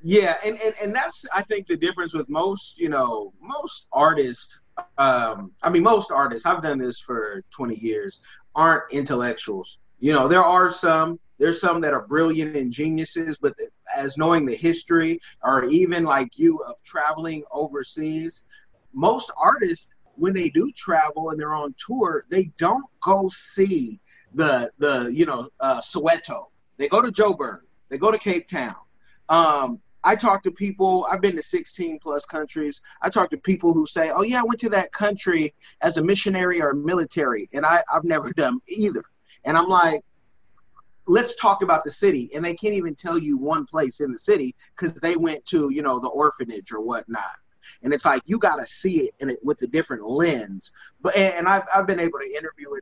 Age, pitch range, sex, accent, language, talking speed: 30-49, 155-245 Hz, male, American, English, 190 wpm